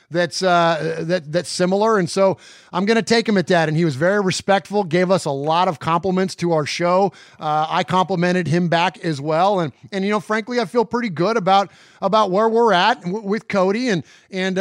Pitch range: 170-220 Hz